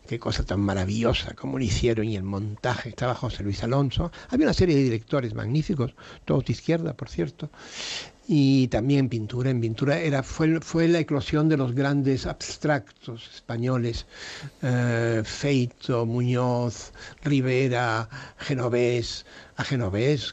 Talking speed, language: 140 wpm, Spanish